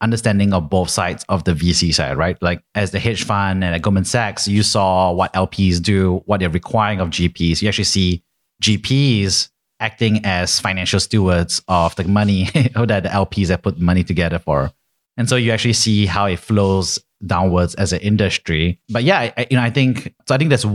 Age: 30-49